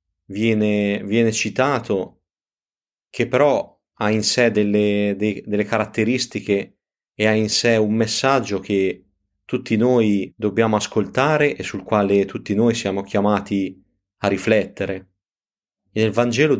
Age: 30-49